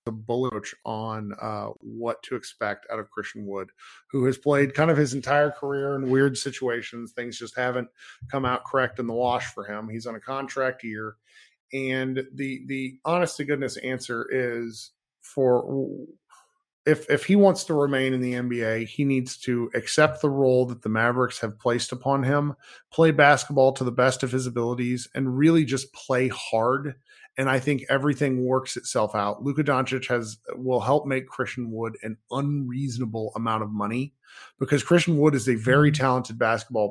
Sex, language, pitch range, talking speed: male, English, 115-135 Hz, 180 wpm